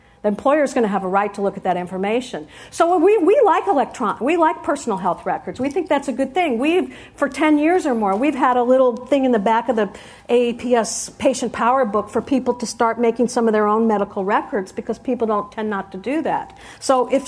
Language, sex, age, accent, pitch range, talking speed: English, female, 50-69, American, 205-255 Hz, 240 wpm